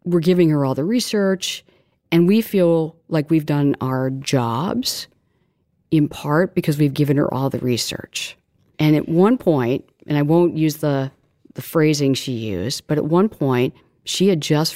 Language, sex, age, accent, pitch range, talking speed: English, female, 40-59, American, 135-175 Hz, 175 wpm